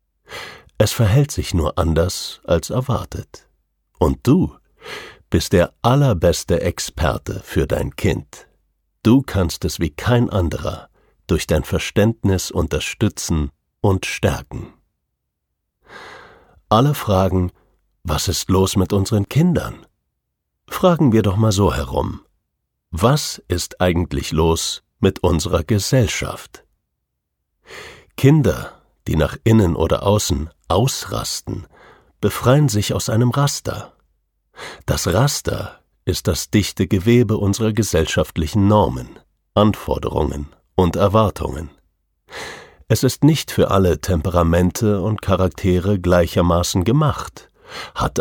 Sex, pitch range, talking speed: male, 85-110 Hz, 105 wpm